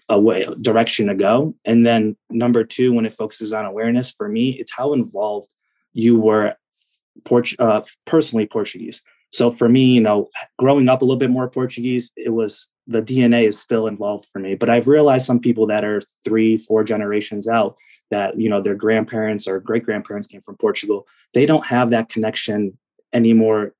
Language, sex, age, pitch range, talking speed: English, male, 20-39, 110-125 Hz, 185 wpm